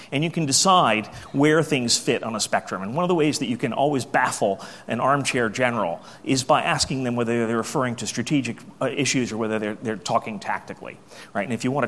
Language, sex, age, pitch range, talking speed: English, male, 30-49, 115-170 Hz, 220 wpm